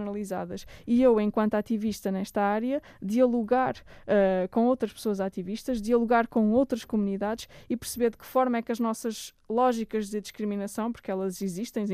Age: 20-39